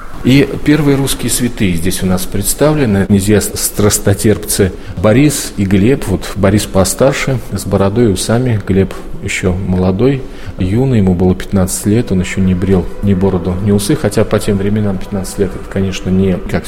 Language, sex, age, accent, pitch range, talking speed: Russian, male, 40-59, native, 95-110 Hz, 165 wpm